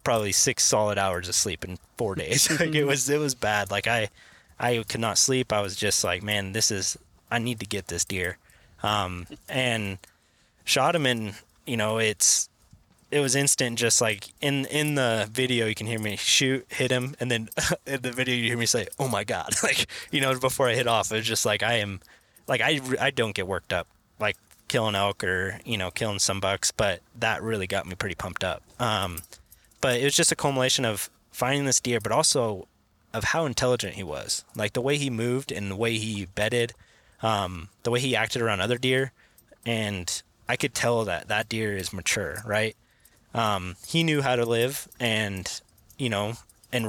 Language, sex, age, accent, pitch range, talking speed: English, male, 20-39, American, 100-125 Hz, 205 wpm